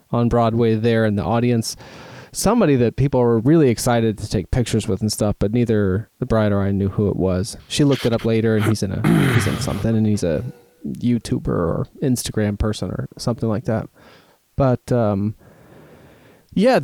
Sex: male